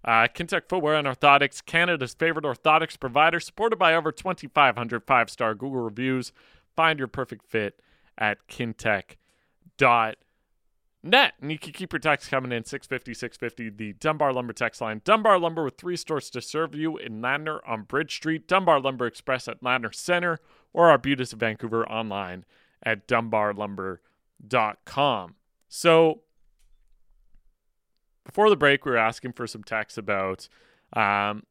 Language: English